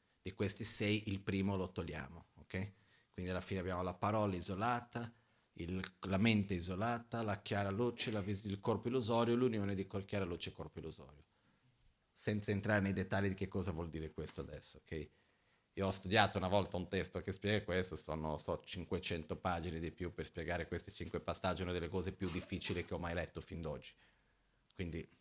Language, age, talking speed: Italian, 40-59, 190 wpm